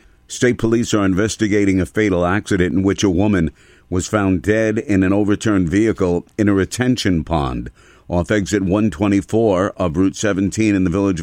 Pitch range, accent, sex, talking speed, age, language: 85-100 Hz, American, male, 165 wpm, 50-69, English